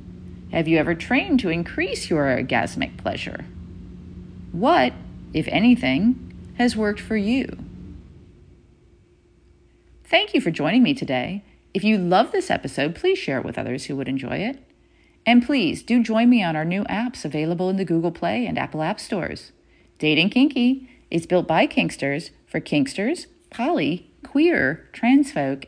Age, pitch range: 40-59, 150-255 Hz